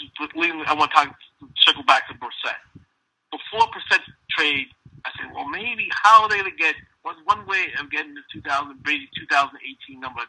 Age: 50-69